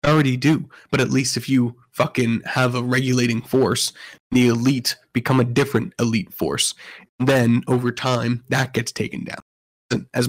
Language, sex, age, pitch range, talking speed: English, male, 20-39, 125-155 Hz, 155 wpm